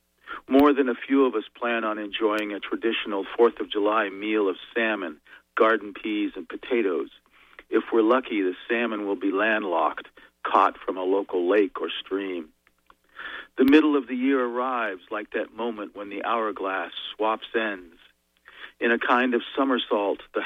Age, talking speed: 50-69, 165 wpm